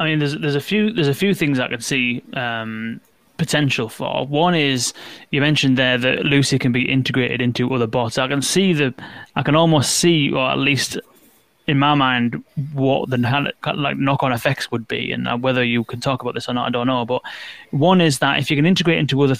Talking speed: 225 wpm